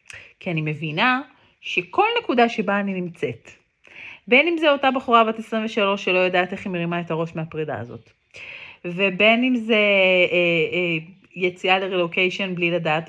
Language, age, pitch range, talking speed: Hebrew, 30-49, 160-245 Hz, 150 wpm